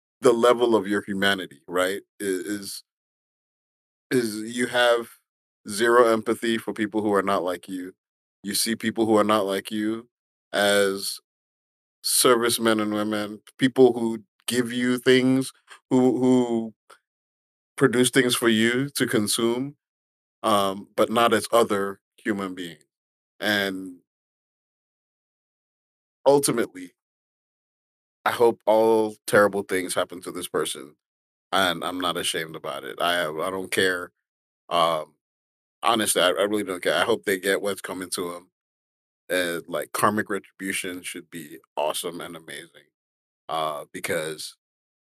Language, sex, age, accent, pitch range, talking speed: English, male, 30-49, American, 95-130 Hz, 130 wpm